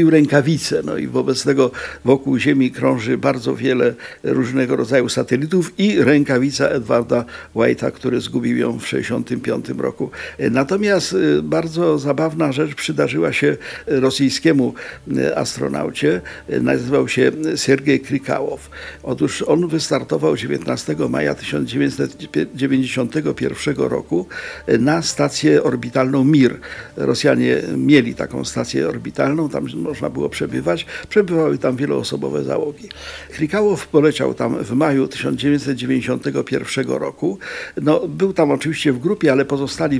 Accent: native